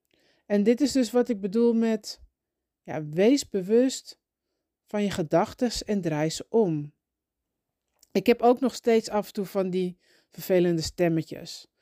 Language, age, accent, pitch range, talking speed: Dutch, 40-59, Dutch, 180-235 Hz, 145 wpm